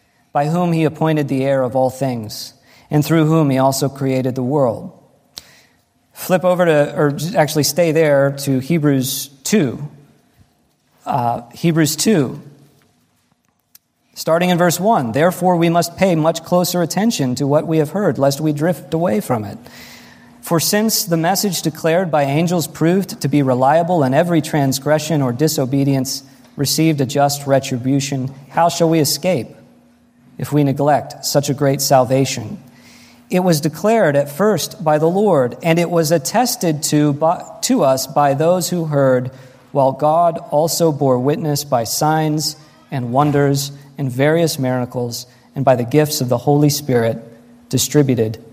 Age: 40-59